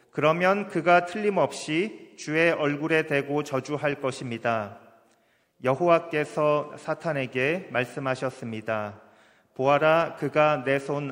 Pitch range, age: 130-155 Hz, 40-59